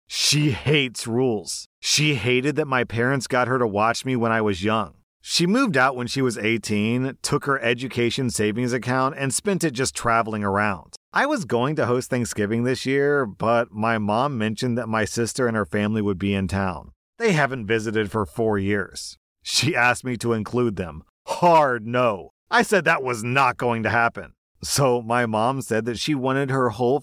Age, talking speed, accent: 40-59, 195 wpm, American